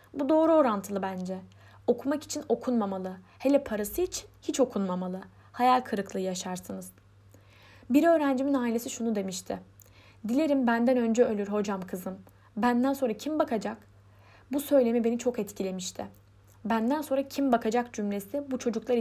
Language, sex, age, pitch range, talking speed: Turkish, female, 10-29, 185-255 Hz, 135 wpm